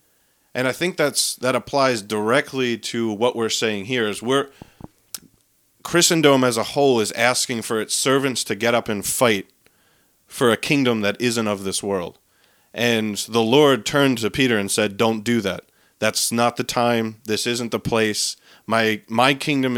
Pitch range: 105-125 Hz